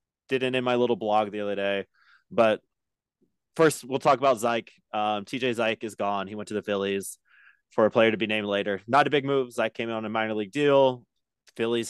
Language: English